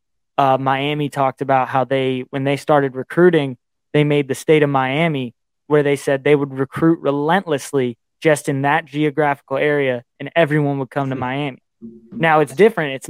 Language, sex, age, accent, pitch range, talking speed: English, male, 20-39, American, 135-160 Hz, 175 wpm